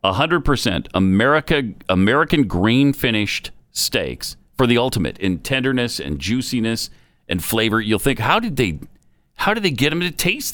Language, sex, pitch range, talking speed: English, male, 95-140 Hz, 160 wpm